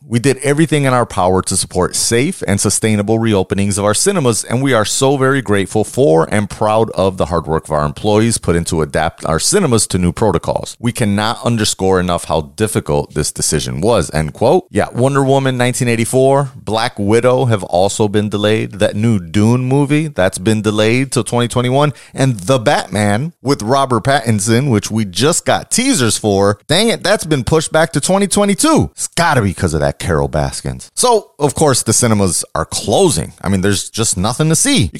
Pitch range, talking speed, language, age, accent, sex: 90-135 Hz, 195 wpm, English, 30-49, American, male